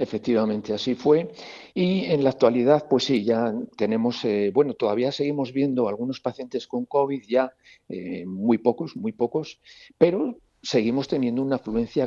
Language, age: Spanish, 50-69